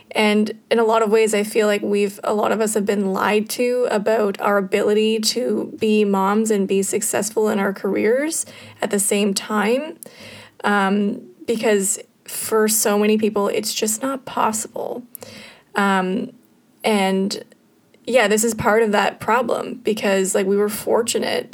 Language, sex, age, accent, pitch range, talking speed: English, female, 20-39, American, 200-230 Hz, 160 wpm